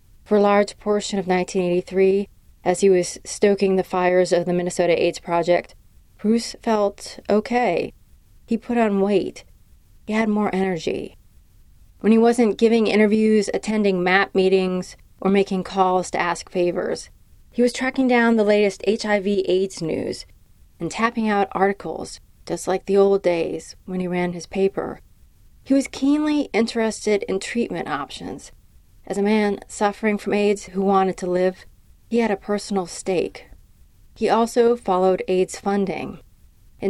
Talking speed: 150 wpm